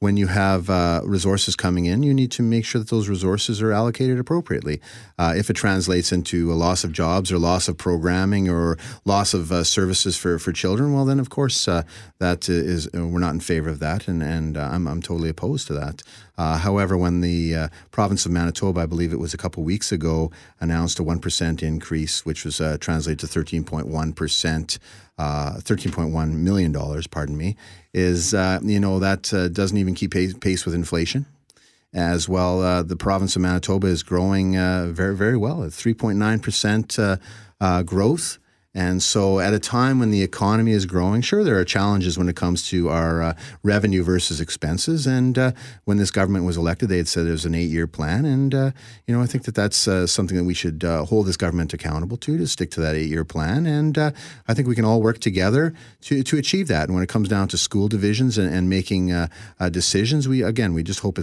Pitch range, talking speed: 85-110 Hz, 210 wpm